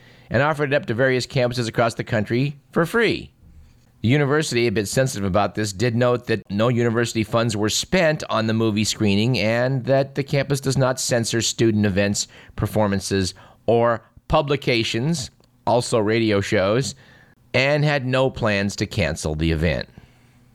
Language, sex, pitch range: English, male, 105-125 Hz